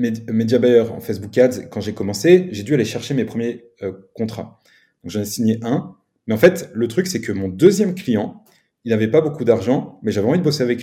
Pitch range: 105-130 Hz